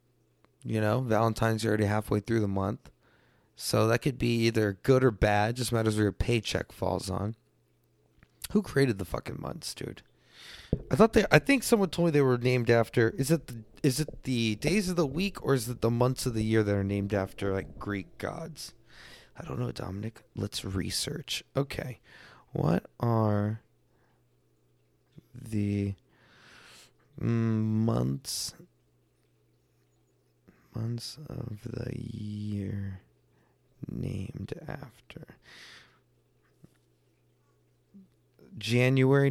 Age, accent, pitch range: 30-49, American, 105-150 Hz